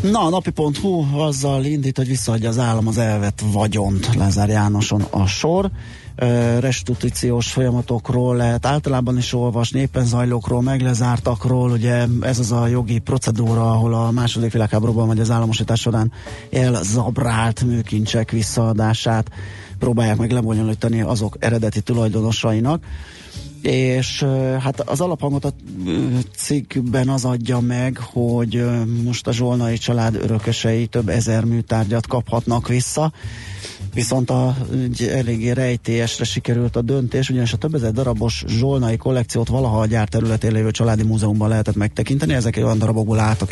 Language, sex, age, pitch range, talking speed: Hungarian, male, 30-49, 110-125 Hz, 130 wpm